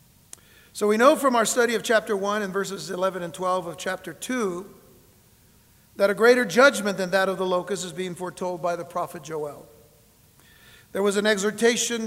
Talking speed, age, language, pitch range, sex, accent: 185 wpm, 50-69, English, 170-215 Hz, male, American